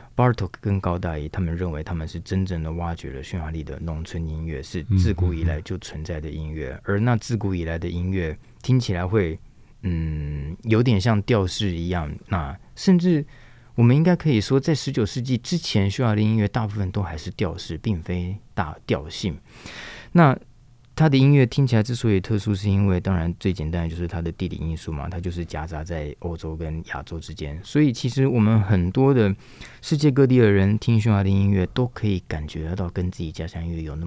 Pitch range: 80-110 Hz